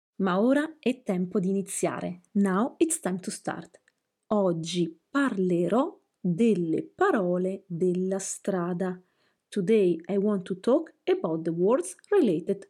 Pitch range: 185-240 Hz